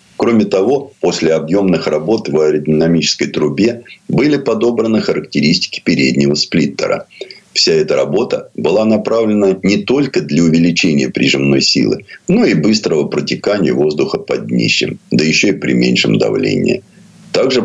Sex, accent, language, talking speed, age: male, native, Russian, 130 wpm, 50-69